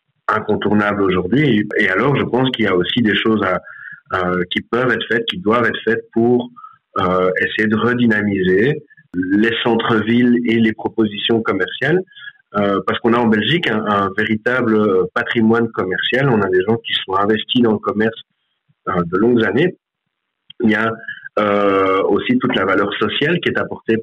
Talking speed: 175 wpm